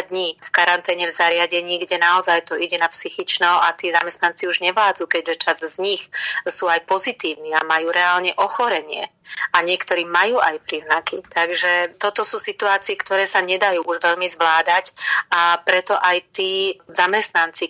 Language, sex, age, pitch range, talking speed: Slovak, female, 30-49, 170-190 Hz, 160 wpm